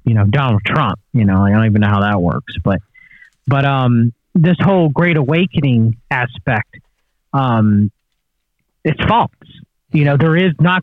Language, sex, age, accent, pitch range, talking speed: English, male, 30-49, American, 130-160 Hz, 160 wpm